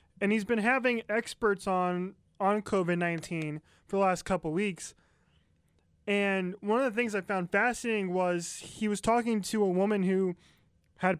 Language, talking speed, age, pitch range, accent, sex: English, 165 wpm, 20-39, 170-210 Hz, American, male